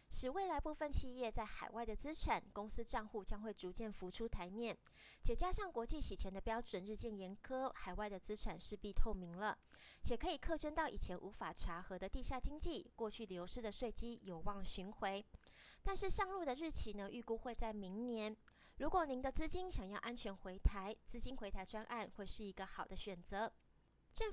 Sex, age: female, 20-39